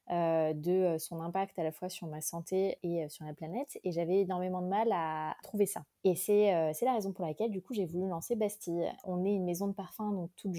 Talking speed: 250 wpm